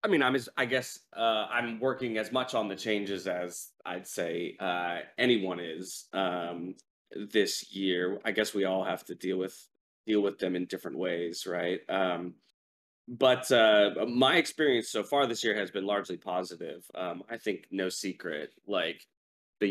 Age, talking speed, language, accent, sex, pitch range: 20-39, 175 wpm, English, American, male, 95-110 Hz